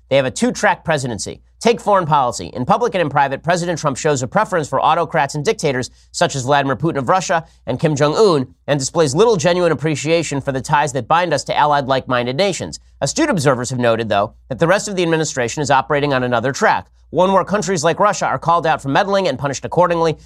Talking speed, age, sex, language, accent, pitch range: 220 wpm, 30-49, male, English, American, 130-165 Hz